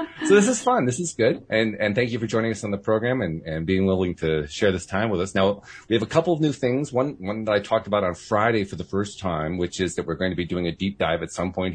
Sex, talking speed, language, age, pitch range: male, 310 wpm, English, 40-59, 85-110 Hz